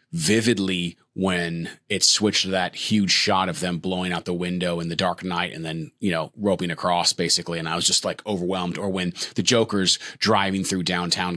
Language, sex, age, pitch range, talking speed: English, male, 30-49, 90-125 Hz, 200 wpm